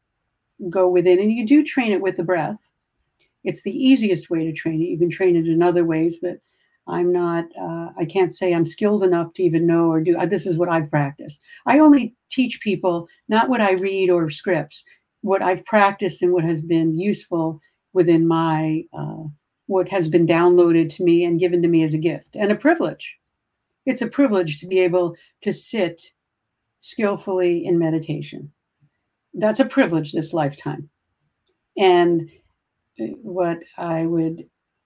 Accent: American